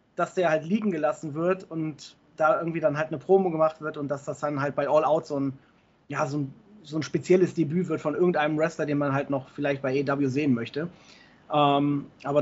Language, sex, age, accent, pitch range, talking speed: German, male, 30-49, German, 145-185 Hz, 225 wpm